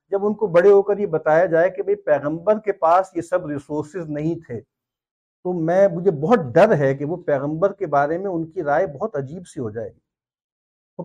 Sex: male